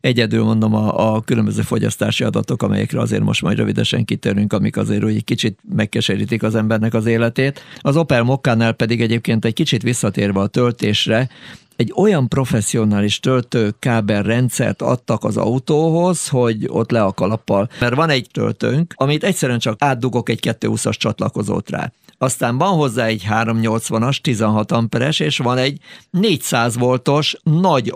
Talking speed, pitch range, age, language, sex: 150 wpm, 110-140 Hz, 50-69, Hungarian, male